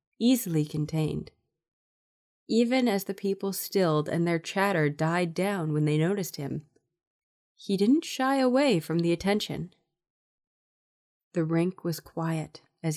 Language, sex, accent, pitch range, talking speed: English, female, American, 145-190 Hz, 130 wpm